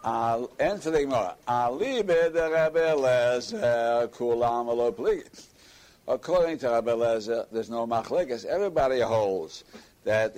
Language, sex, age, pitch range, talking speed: English, male, 60-79, 115-160 Hz, 80 wpm